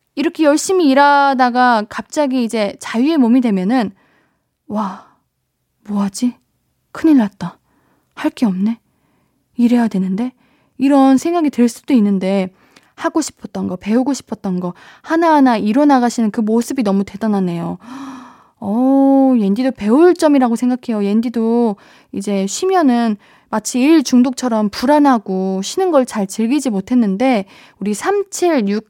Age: 20-39